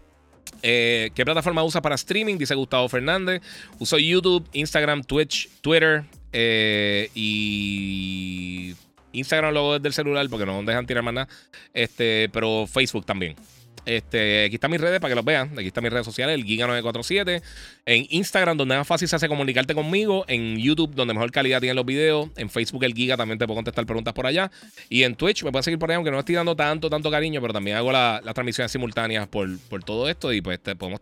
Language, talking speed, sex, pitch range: Spanish, 205 wpm, male, 105-150 Hz